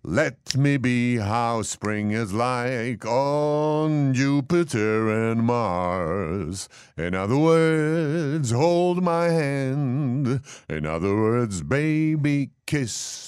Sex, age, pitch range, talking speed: male, 50-69, 125-185 Hz, 100 wpm